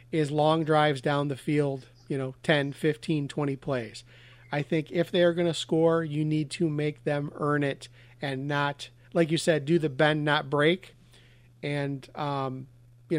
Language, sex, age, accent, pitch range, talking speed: English, male, 40-59, American, 135-165 Hz, 180 wpm